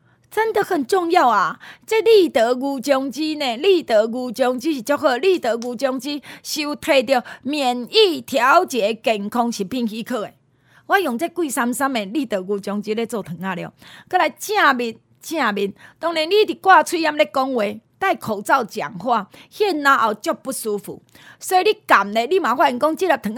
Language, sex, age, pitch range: Chinese, female, 30-49, 215-325 Hz